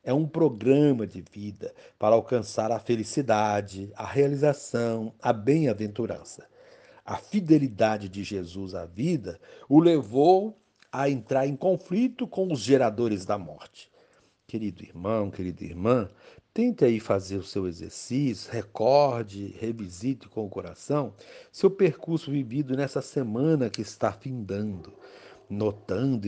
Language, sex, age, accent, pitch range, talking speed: Portuguese, male, 60-79, Brazilian, 105-150 Hz, 125 wpm